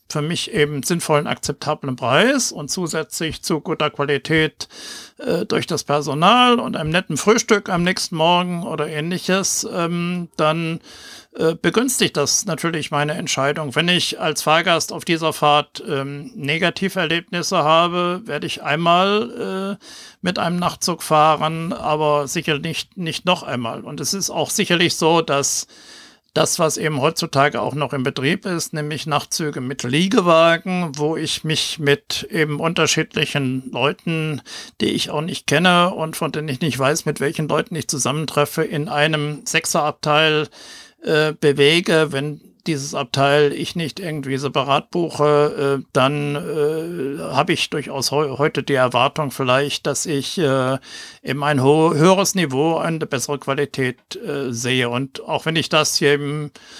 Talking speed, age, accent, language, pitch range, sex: 150 wpm, 60-79, German, German, 145-170 Hz, male